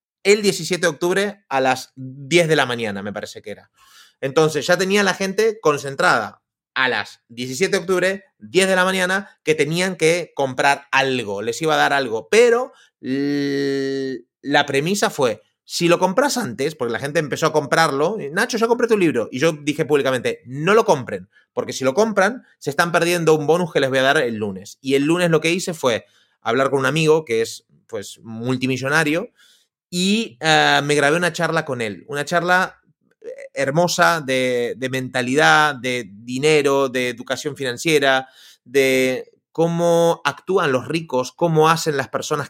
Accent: Spanish